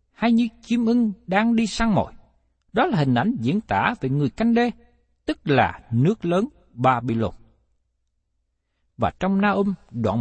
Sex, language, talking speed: male, Vietnamese, 165 wpm